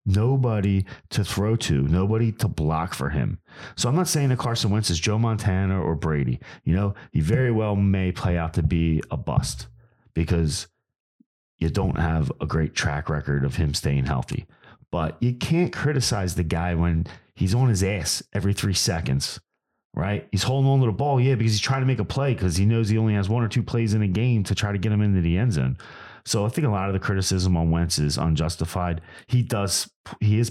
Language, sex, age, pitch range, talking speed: English, male, 30-49, 80-110 Hz, 220 wpm